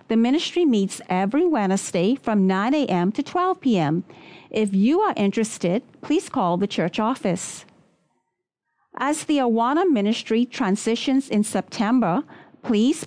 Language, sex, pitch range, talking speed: English, female, 200-275 Hz, 130 wpm